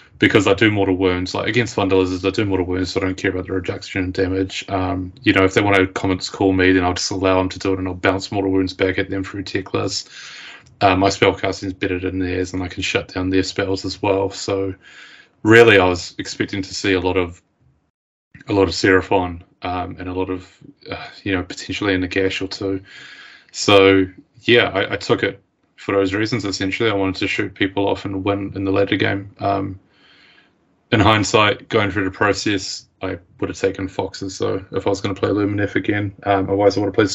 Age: 20-39